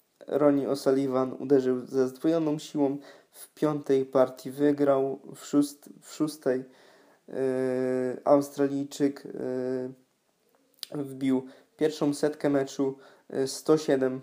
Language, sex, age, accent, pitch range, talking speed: Polish, male, 20-39, native, 130-145 Hz, 80 wpm